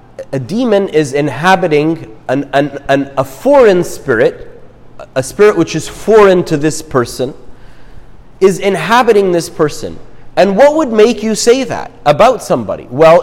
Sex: male